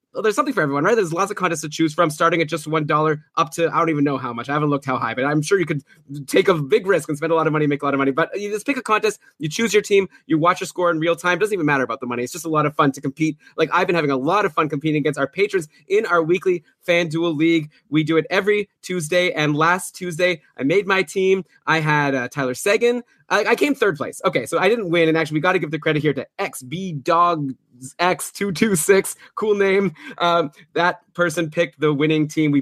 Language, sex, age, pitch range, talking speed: English, male, 20-39, 135-175 Hz, 270 wpm